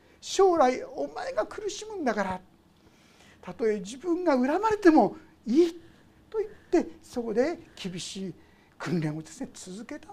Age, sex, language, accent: 60-79, male, Japanese, native